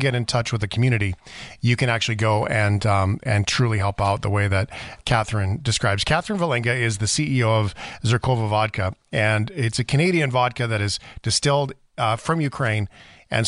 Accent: American